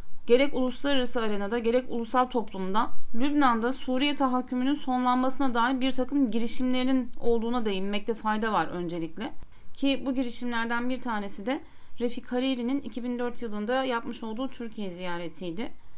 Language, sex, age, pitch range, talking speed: Turkish, female, 40-59, 220-265 Hz, 125 wpm